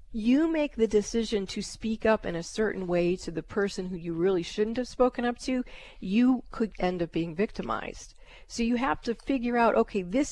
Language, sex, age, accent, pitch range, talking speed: English, female, 40-59, American, 180-230 Hz, 210 wpm